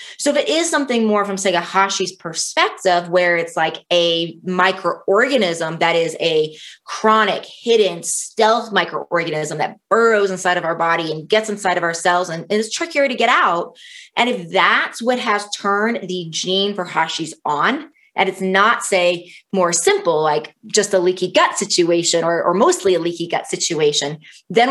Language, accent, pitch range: English, American, 170-215 Hz